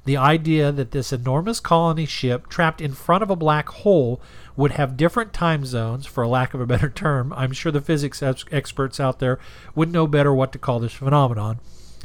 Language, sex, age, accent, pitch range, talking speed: English, male, 40-59, American, 130-160 Hz, 200 wpm